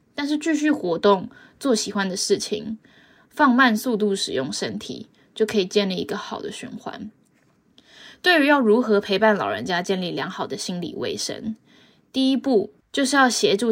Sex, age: female, 20-39